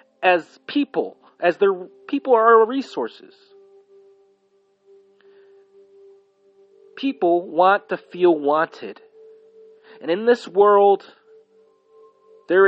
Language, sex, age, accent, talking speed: English, male, 30-49, American, 85 wpm